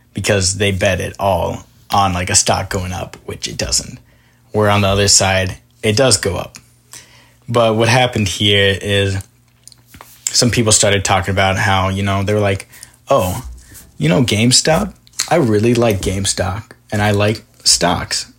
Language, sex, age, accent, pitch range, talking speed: English, male, 20-39, American, 95-120 Hz, 165 wpm